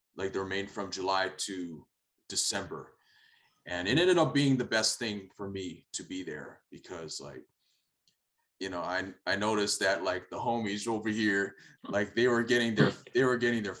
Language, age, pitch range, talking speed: English, 20-39, 100-125 Hz, 185 wpm